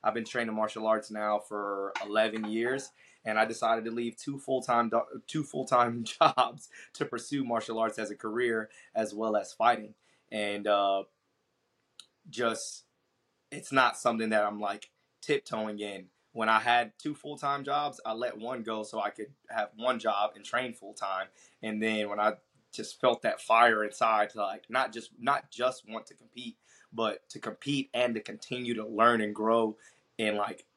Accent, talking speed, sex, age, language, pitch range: American, 180 wpm, male, 20-39, English, 105-120 Hz